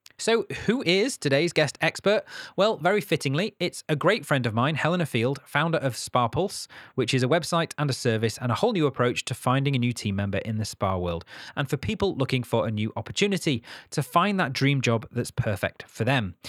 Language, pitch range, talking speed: English, 120-165 Hz, 220 wpm